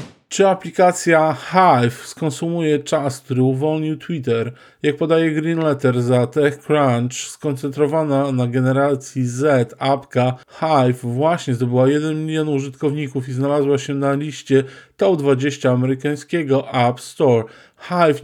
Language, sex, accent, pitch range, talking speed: Polish, male, native, 130-155 Hz, 115 wpm